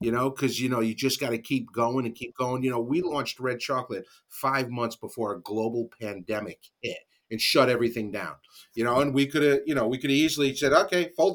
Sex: male